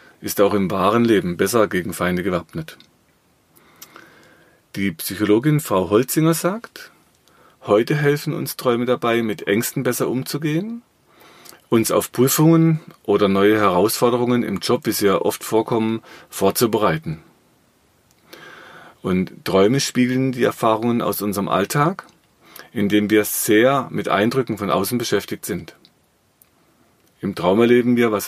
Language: German